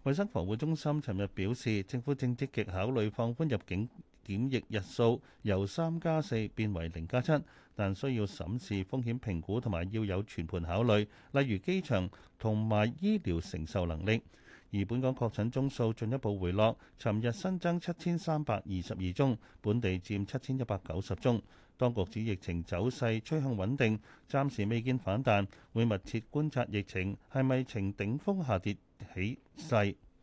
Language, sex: Chinese, male